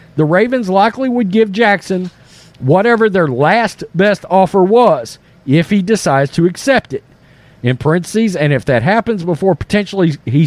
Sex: male